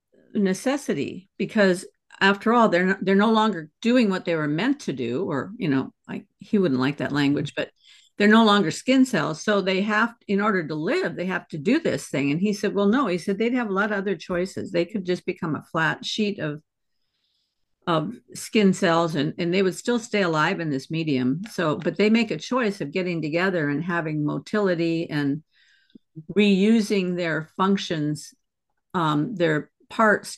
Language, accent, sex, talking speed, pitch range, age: English, American, female, 195 wpm, 170-215 Hz, 50-69